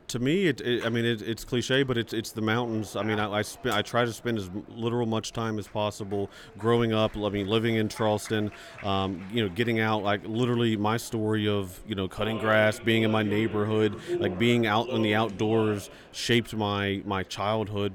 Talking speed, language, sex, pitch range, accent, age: 210 wpm, English, male, 100-120 Hz, American, 30-49